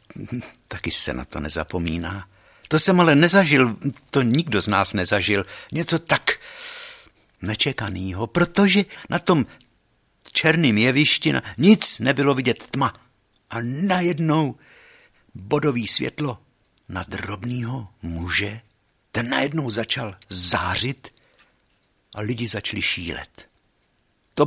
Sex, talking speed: male, 105 wpm